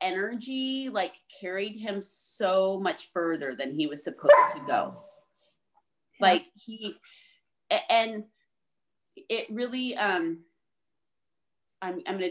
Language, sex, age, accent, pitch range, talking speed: English, female, 30-49, American, 180-300 Hz, 105 wpm